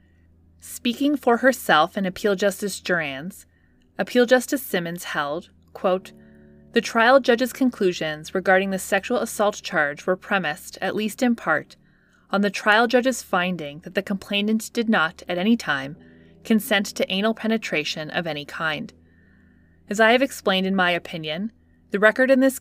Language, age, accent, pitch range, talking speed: English, 20-39, American, 160-225 Hz, 155 wpm